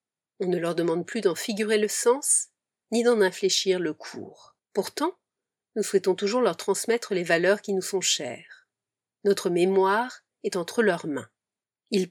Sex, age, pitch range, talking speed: female, 40-59, 185-235 Hz, 165 wpm